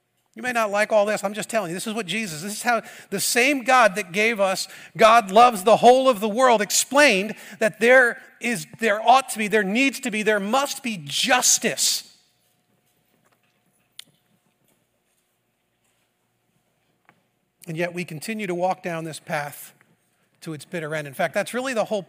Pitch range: 180-240 Hz